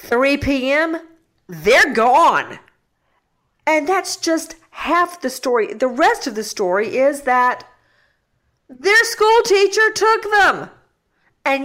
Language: English